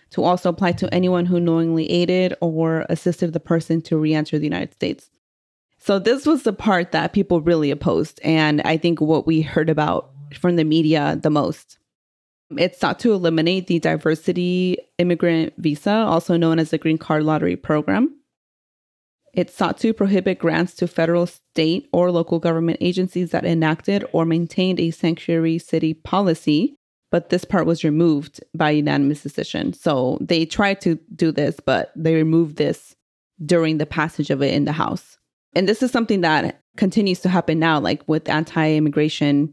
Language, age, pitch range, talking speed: English, 30-49, 155-175 Hz, 170 wpm